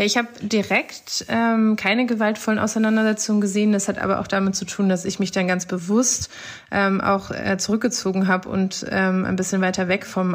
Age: 20-39